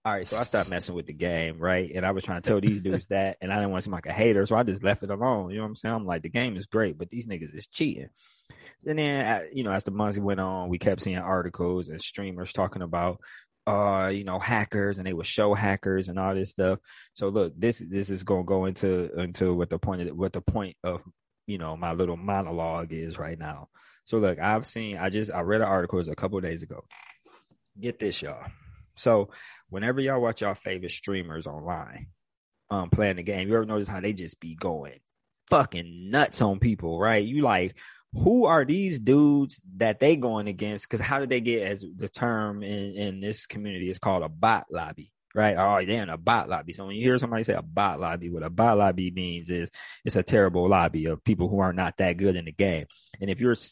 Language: English